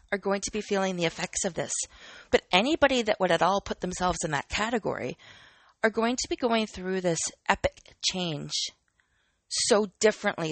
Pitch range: 170-220 Hz